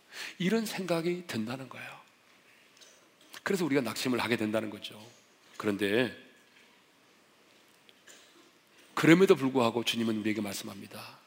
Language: Korean